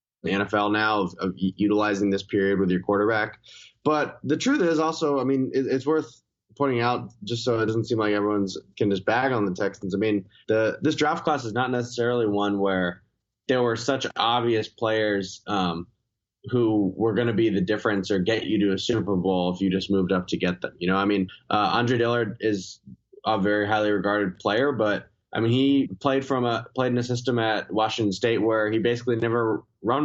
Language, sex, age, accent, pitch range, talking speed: English, male, 20-39, American, 105-130 Hz, 215 wpm